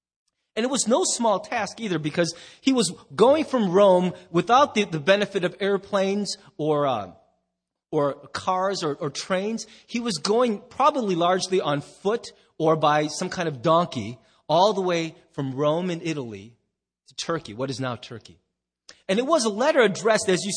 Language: English